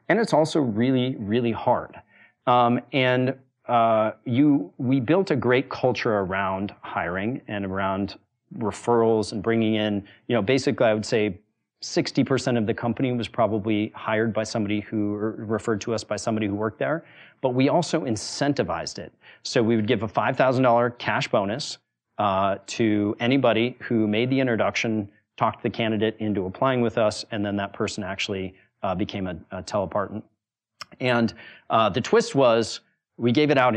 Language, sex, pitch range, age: English, male, 105-125 Hz, 30-49